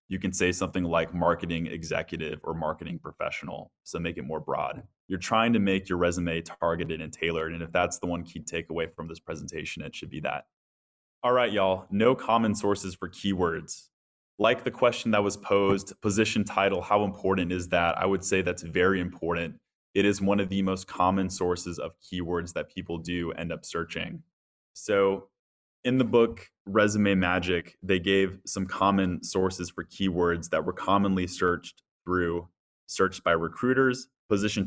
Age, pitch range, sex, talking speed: 20-39, 90-105 Hz, male, 175 wpm